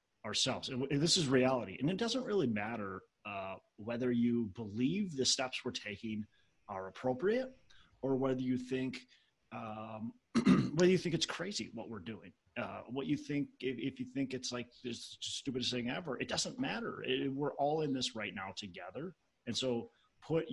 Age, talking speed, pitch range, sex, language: 30-49, 180 wpm, 105-130 Hz, male, English